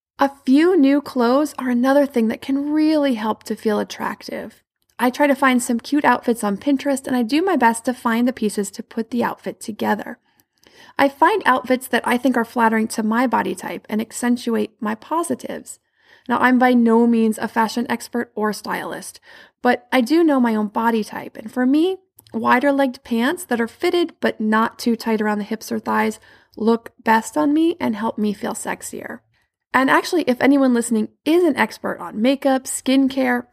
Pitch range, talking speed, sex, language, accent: 220-265 Hz, 195 wpm, female, English, American